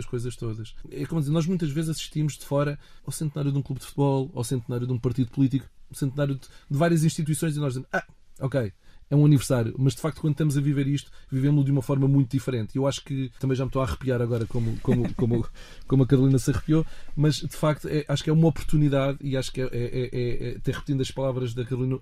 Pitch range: 125-145 Hz